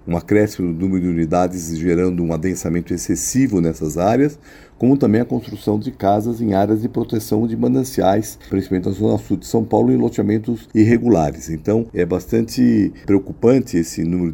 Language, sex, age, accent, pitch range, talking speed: Portuguese, male, 50-69, Brazilian, 90-120 Hz, 165 wpm